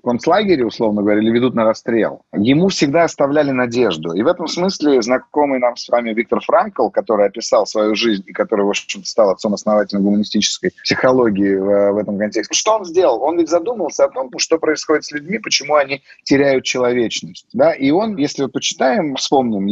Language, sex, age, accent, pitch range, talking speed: Russian, male, 30-49, native, 130-165 Hz, 185 wpm